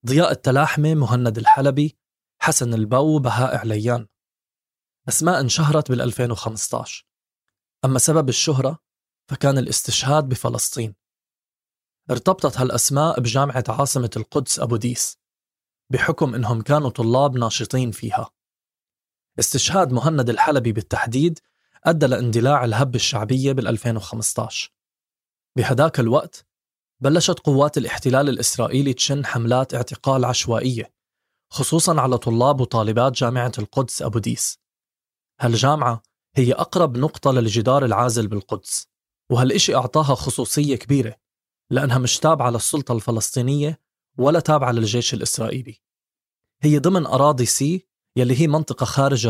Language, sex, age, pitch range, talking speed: Arabic, male, 20-39, 120-145 Hz, 105 wpm